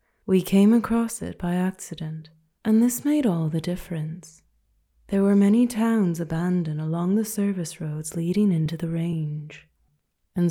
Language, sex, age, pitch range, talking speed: English, female, 20-39, 160-210 Hz, 150 wpm